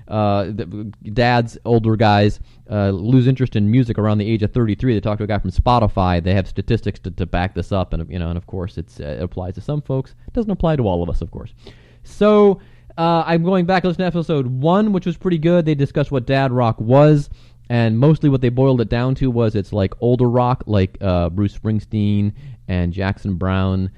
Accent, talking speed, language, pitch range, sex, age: American, 230 wpm, English, 95-140 Hz, male, 30-49